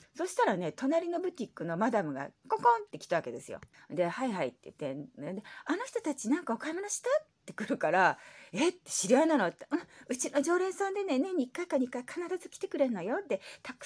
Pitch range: 215-330 Hz